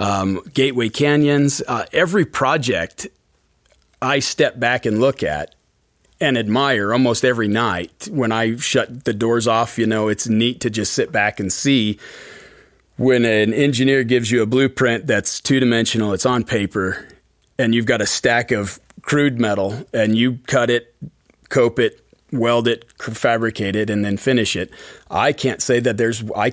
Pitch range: 105-130 Hz